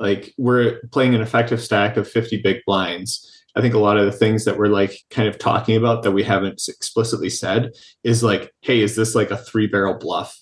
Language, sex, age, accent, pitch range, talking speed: English, male, 30-49, American, 100-115 Hz, 225 wpm